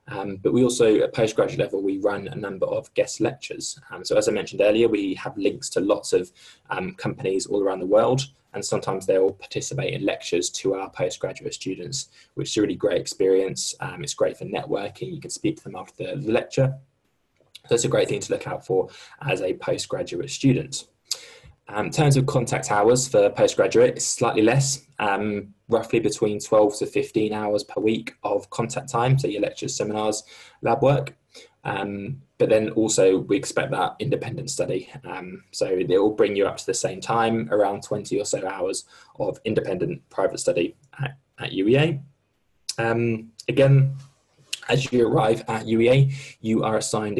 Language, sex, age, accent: Russian, male, 20-39, British